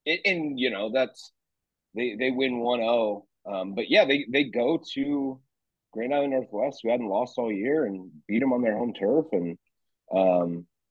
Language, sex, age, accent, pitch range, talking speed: English, male, 30-49, American, 95-120 Hz, 185 wpm